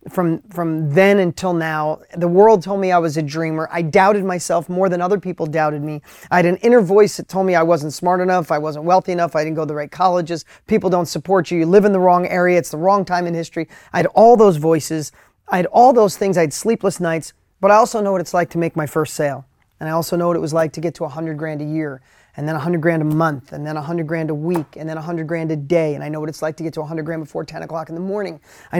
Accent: American